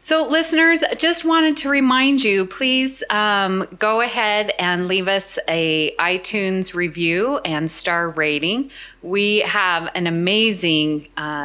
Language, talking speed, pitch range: English, 135 wpm, 160-215 Hz